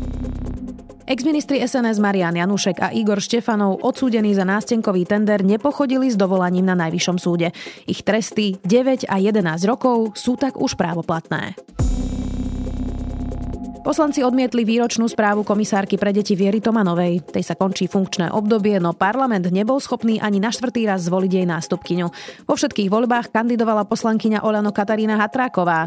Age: 30-49